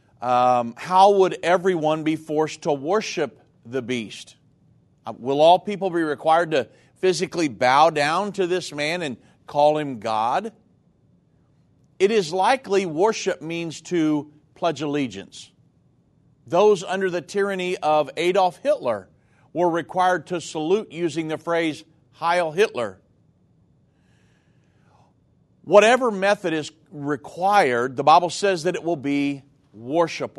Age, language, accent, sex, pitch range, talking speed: 50-69, English, American, male, 150-185 Hz, 120 wpm